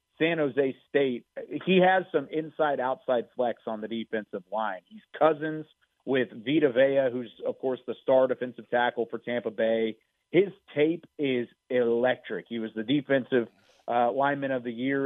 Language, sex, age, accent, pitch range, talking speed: English, male, 40-59, American, 120-150 Hz, 160 wpm